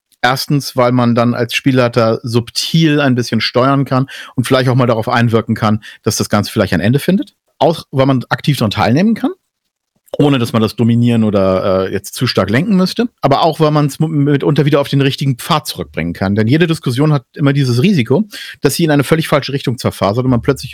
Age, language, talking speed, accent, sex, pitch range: 50-69, German, 215 wpm, German, male, 110-140 Hz